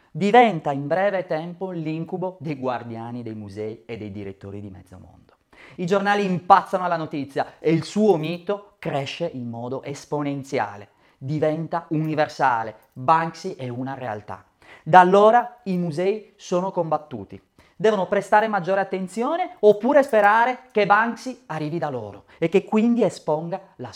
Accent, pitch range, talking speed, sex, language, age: native, 125-185 Hz, 140 wpm, male, Italian, 30-49